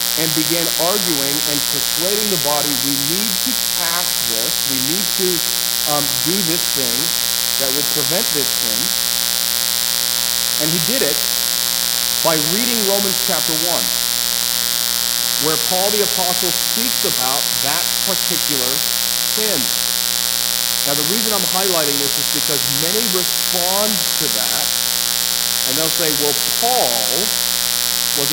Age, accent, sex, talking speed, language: 50-69, American, male, 125 wpm, English